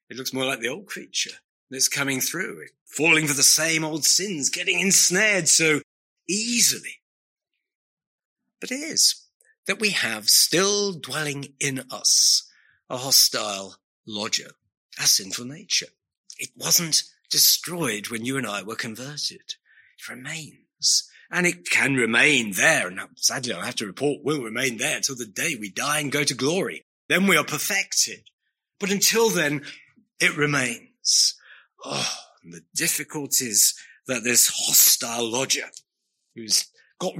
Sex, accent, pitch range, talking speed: male, British, 130-190 Hz, 140 wpm